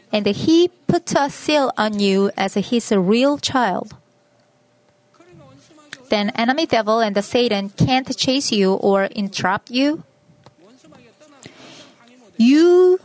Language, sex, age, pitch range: Korean, female, 30-49, 205-255 Hz